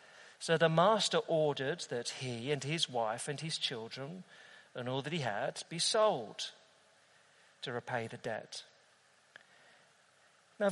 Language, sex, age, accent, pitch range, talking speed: English, male, 40-59, British, 145-210 Hz, 135 wpm